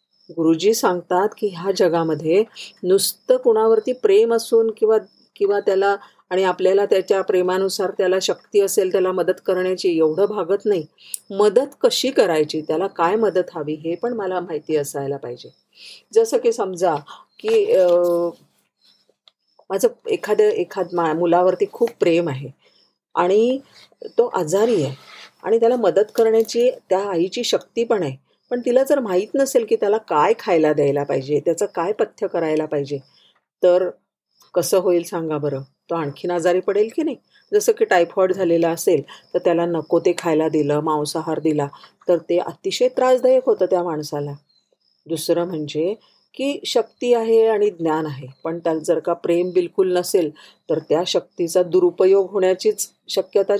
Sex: female